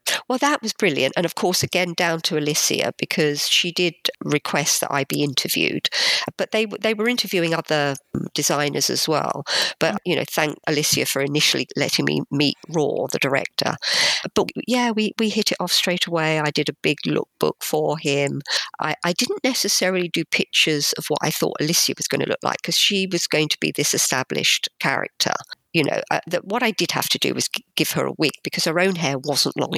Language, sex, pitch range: English, female, 150-195 Hz